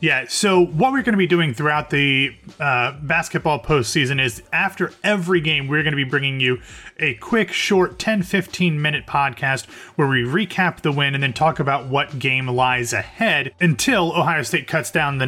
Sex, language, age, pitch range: male, English, 30-49, 130-175 Hz